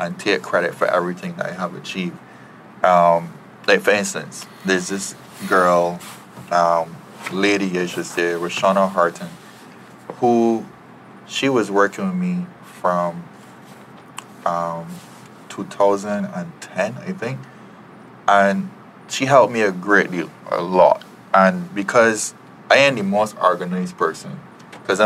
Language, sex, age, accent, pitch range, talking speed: English, male, 20-39, American, 90-105 Hz, 125 wpm